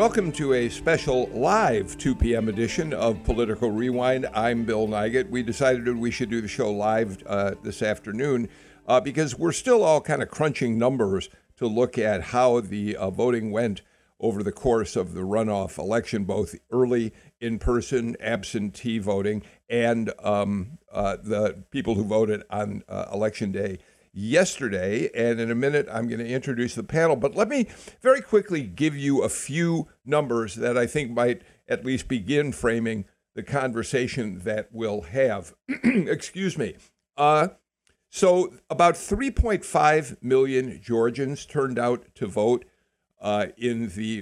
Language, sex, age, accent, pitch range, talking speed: English, male, 60-79, American, 110-135 Hz, 155 wpm